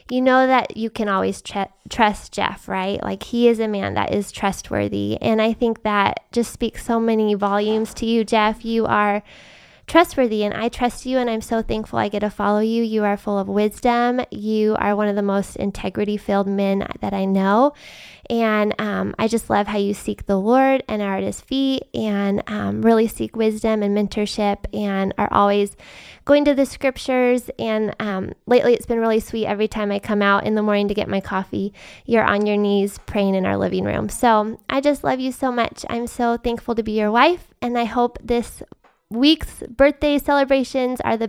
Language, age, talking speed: English, 10-29, 205 wpm